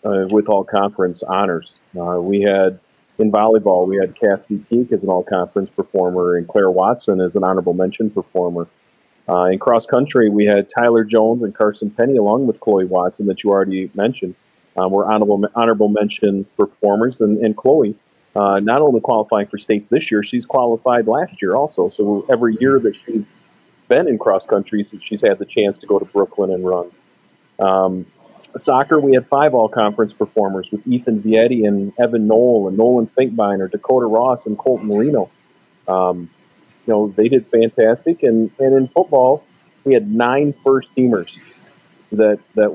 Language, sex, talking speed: English, male, 170 wpm